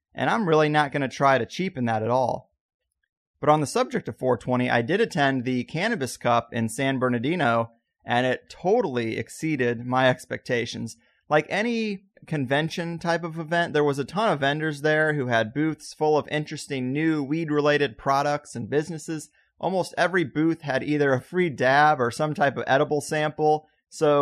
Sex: male